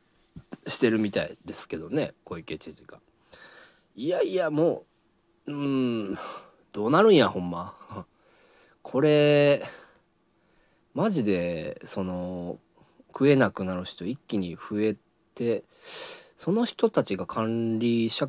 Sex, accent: male, native